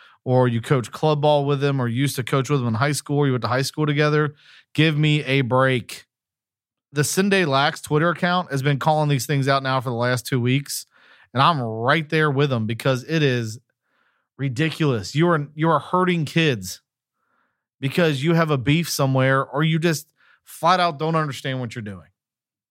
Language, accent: English, American